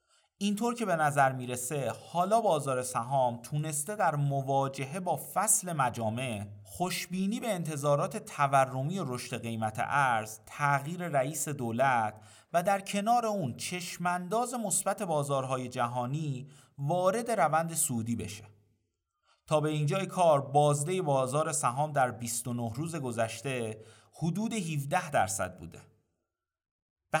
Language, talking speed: Persian, 115 wpm